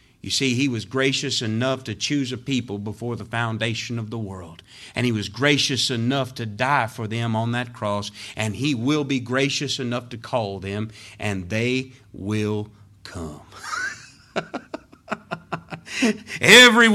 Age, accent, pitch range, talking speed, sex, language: 50-69, American, 100-140 Hz, 150 wpm, male, English